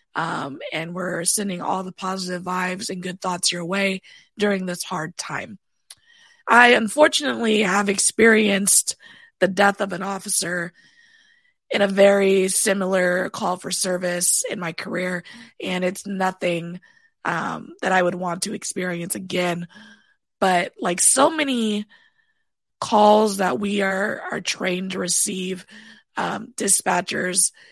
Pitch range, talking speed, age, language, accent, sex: 185-225 Hz, 130 wpm, 20-39, English, American, female